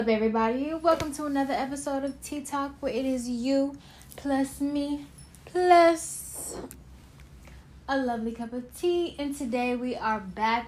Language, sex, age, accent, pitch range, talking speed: English, female, 10-29, American, 210-255 Hz, 140 wpm